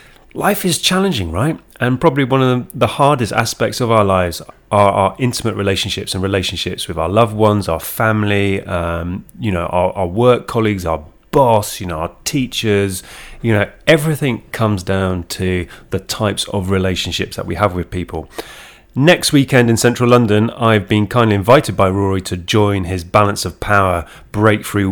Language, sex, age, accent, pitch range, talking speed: English, male, 30-49, British, 90-110 Hz, 175 wpm